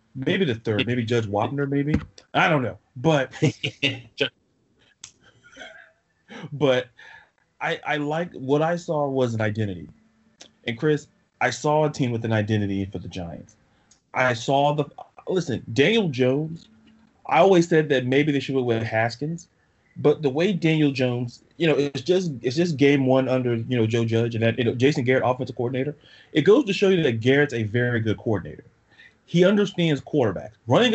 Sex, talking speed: male, 175 wpm